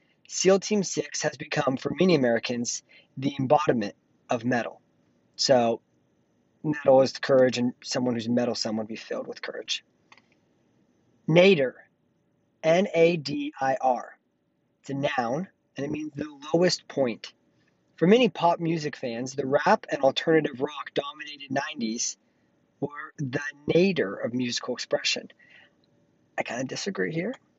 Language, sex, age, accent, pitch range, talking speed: English, male, 40-59, American, 130-175 Hz, 135 wpm